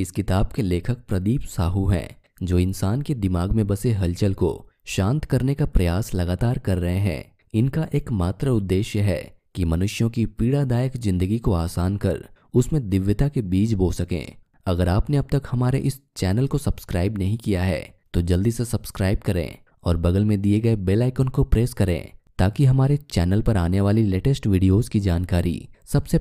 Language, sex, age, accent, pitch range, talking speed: Hindi, male, 20-39, native, 95-125 Hz, 180 wpm